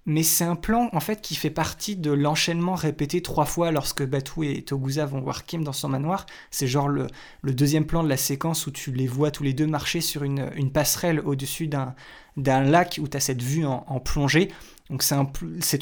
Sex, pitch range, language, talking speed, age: male, 140-170 Hz, French, 230 wpm, 20-39